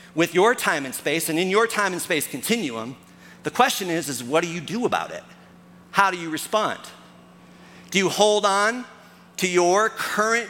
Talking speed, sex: 190 wpm, male